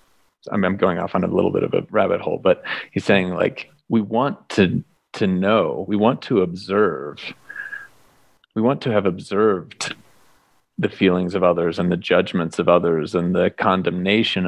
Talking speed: 170 wpm